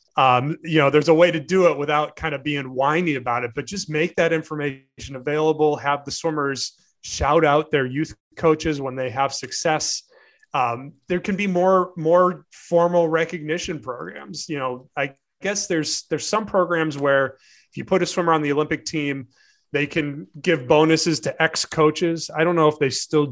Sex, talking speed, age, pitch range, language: male, 190 wpm, 30-49, 135-160 Hz, English